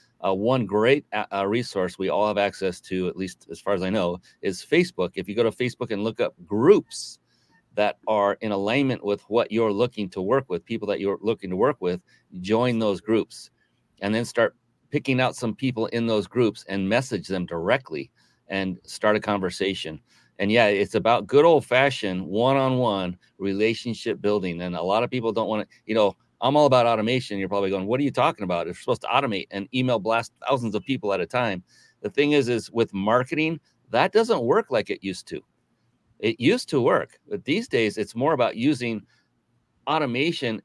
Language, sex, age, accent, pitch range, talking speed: English, male, 40-59, American, 95-120 Hz, 200 wpm